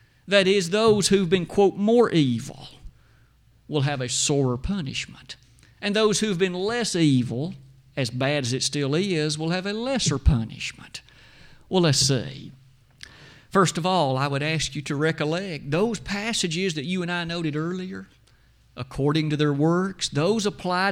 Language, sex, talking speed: English, male, 160 wpm